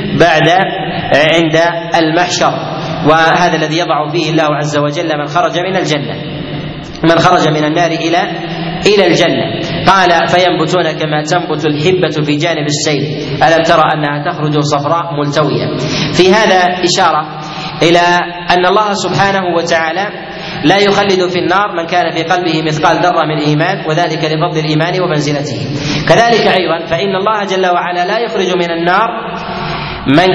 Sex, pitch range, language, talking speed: male, 160-185 Hz, Arabic, 140 wpm